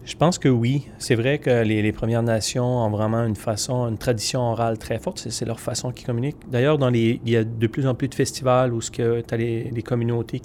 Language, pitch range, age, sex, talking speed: French, 115-135 Hz, 30-49, male, 260 wpm